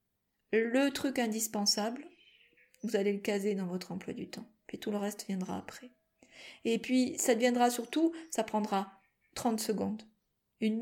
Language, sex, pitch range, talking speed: French, female, 205-235 Hz, 155 wpm